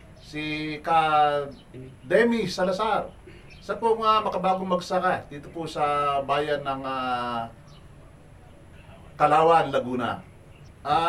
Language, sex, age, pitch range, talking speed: Filipino, male, 50-69, 165-240 Hz, 105 wpm